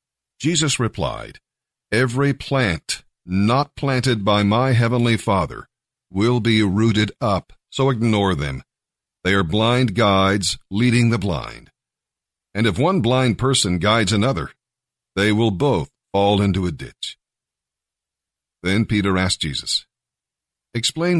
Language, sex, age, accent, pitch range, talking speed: English, male, 50-69, American, 95-120 Hz, 120 wpm